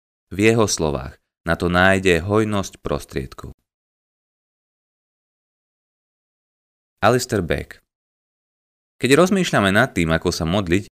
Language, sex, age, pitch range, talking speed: Slovak, male, 30-49, 85-115 Hz, 95 wpm